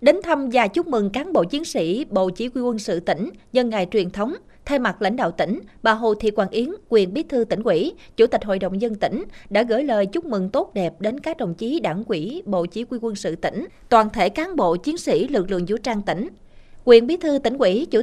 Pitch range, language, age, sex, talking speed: 190-245 Hz, Vietnamese, 20-39, female, 255 wpm